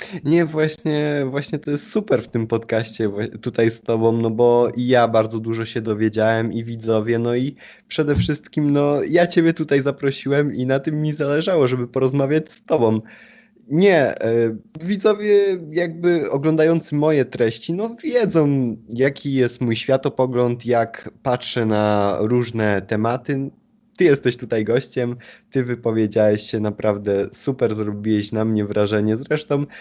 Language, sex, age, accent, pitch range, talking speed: Polish, male, 20-39, native, 110-145 Hz, 145 wpm